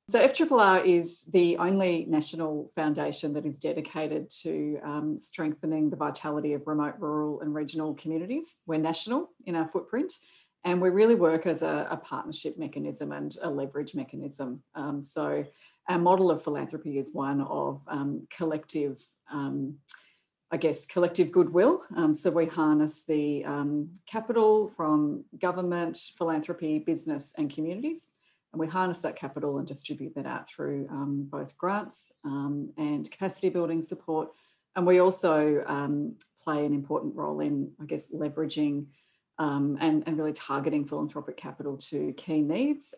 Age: 40-59